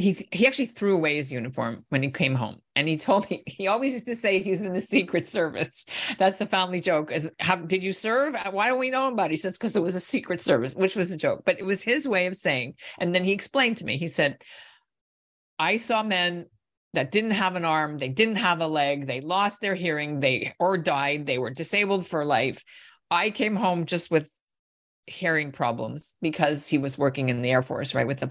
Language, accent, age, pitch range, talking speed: English, American, 50-69, 145-190 Hz, 235 wpm